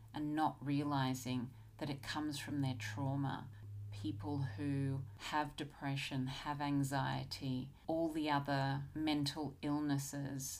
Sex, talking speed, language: female, 115 wpm, English